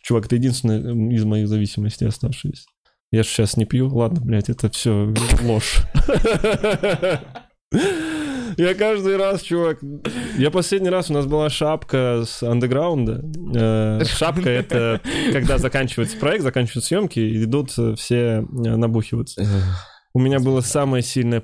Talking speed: 130 wpm